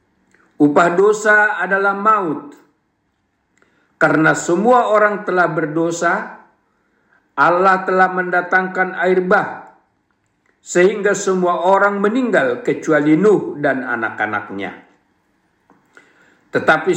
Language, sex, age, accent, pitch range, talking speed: Indonesian, male, 50-69, native, 165-200 Hz, 80 wpm